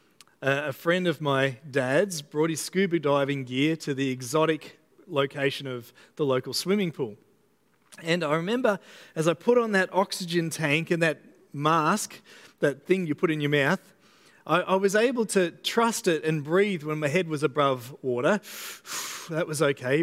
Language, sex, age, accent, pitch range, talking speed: English, male, 40-59, Australian, 155-195 Hz, 175 wpm